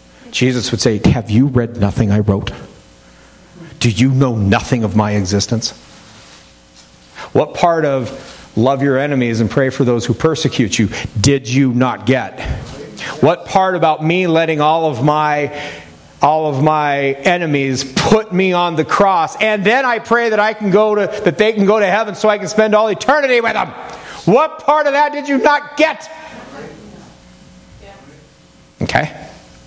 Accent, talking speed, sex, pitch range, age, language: American, 165 wpm, male, 135-215 Hz, 50-69, English